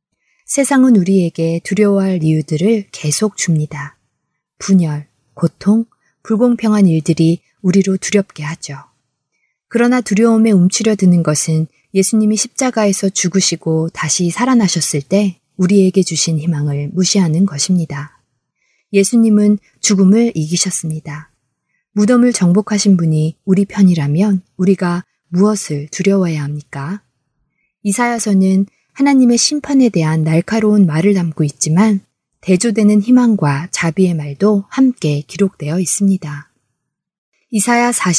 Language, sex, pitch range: Korean, female, 160-210 Hz